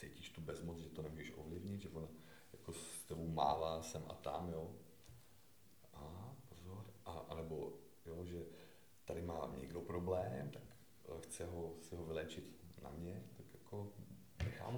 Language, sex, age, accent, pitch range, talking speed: Czech, male, 40-59, native, 80-105 Hz, 150 wpm